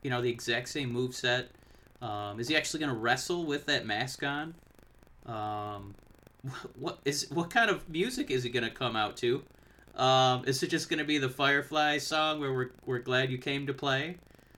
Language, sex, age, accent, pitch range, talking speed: English, male, 30-49, American, 120-155 Hz, 205 wpm